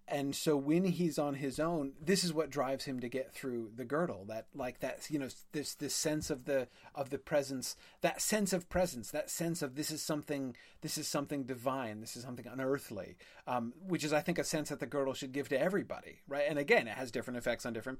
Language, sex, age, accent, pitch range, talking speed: English, male, 30-49, American, 120-150 Hz, 235 wpm